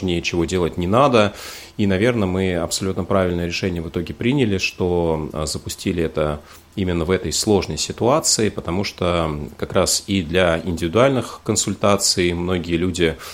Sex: male